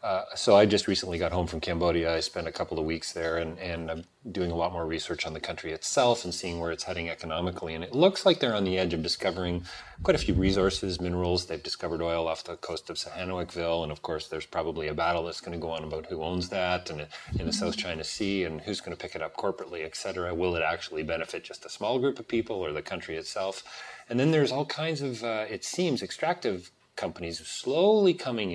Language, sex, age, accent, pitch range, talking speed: English, male, 30-49, American, 85-95 Hz, 245 wpm